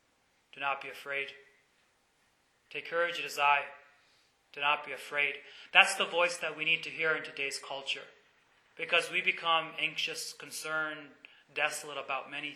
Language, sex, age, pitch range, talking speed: English, male, 30-49, 135-160 Hz, 155 wpm